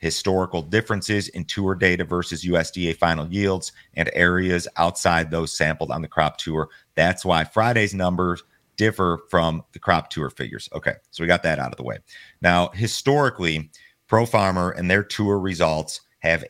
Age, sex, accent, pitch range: 30-49, male, American, 80-95 Hz